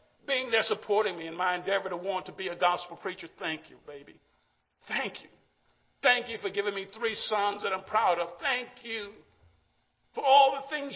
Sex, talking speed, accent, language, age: male, 195 wpm, American, English, 50-69